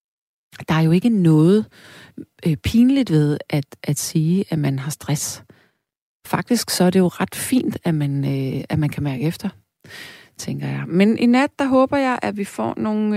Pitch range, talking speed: 140-200 Hz, 190 wpm